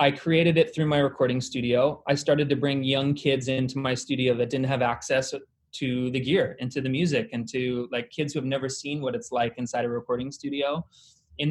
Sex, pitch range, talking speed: male, 125-150 Hz, 225 wpm